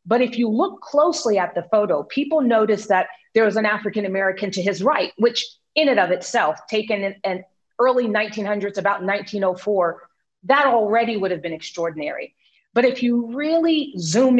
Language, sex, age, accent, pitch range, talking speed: English, female, 40-59, American, 190-240 Hz, 170 wpm